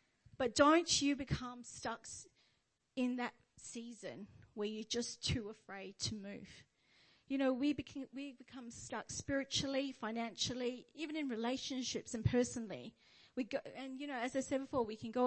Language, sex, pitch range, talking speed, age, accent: English, female, 230-285 Hz, 160 wpm, 40-59, Australian